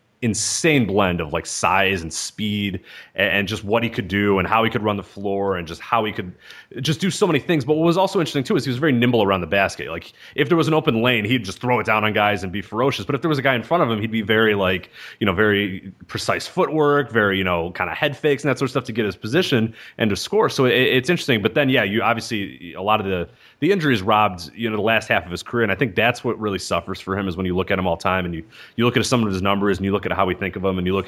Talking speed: 310 wpm